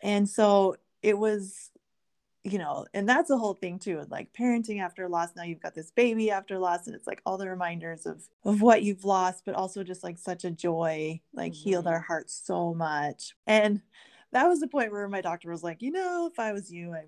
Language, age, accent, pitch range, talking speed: English, 20-39, American, 170-220 Hz, 225 wpm